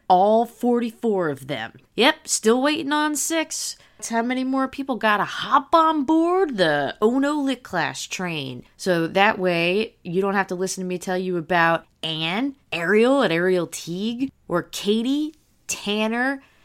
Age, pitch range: 20-39, 180-250 Hz